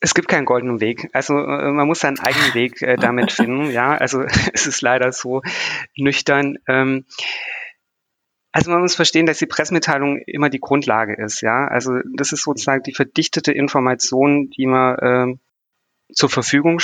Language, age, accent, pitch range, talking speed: German, 30-49, German, 120-140 Hz, 165 wpm